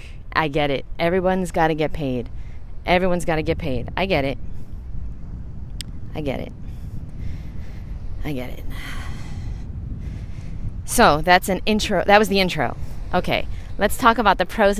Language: English